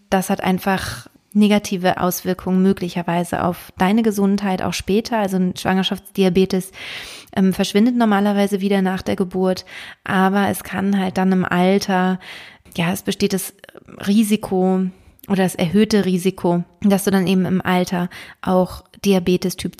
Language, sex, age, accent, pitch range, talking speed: German, female, 20-39, German, 185-205 Hz, 140 wpm